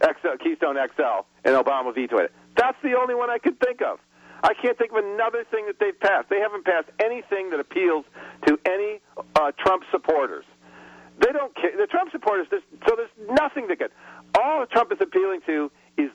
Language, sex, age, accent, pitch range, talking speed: English, male, 50-69, American, 155-240 Hz, 195 wpm